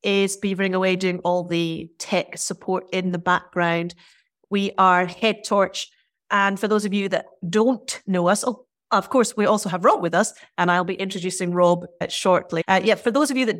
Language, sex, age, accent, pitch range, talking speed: English, female, 30-49, British, 175-200 Hz, 195 wpm